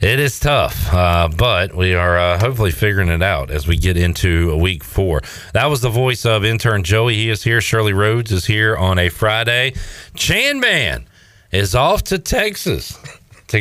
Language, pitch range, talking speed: English, 85-120 Hz, 190 wpm